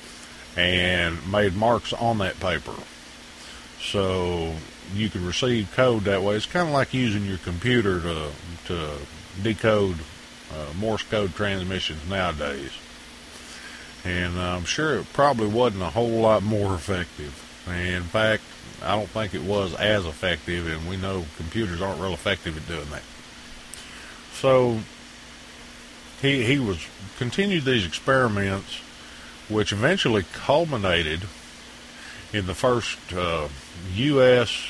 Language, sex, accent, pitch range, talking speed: English, male, American, 85-110 Hz, 125 wpm